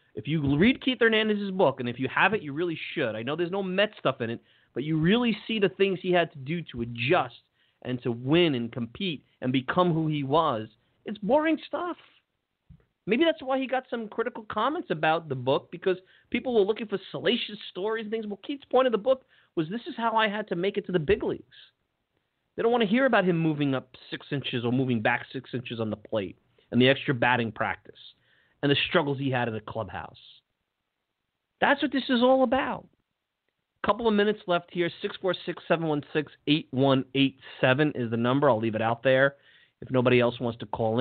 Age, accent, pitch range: 30-49, American, 120-200 Hz